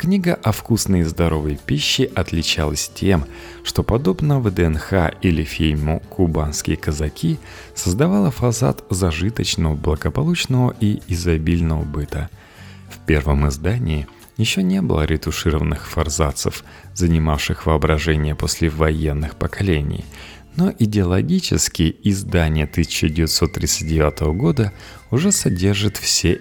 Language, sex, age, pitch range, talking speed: Russian, male, 30-49, 80-105 Hz, 100 wpm